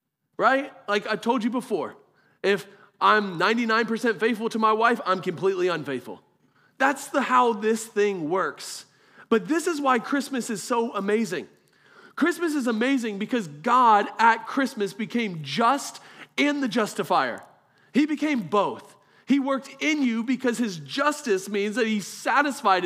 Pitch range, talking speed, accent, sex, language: 180-240 Hz, 145 wpm, American, male, English